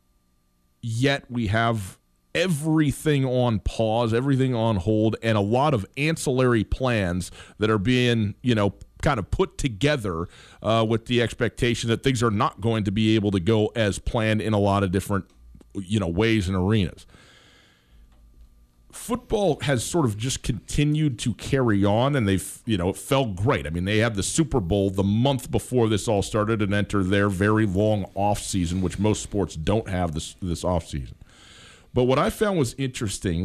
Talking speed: 180 wpm